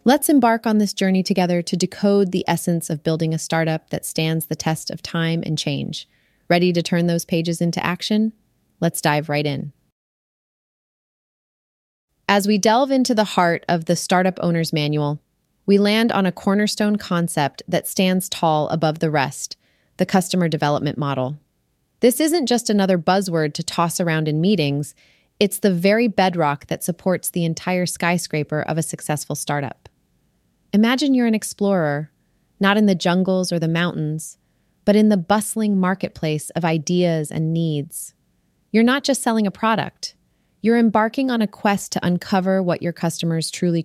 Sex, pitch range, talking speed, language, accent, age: female, 155-195 Hz, 165 wpm, English, American, 30-49